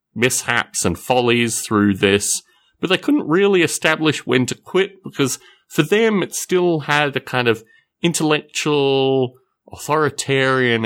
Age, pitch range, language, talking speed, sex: 30-49, 120-185 Hz, English, 135 wpm, male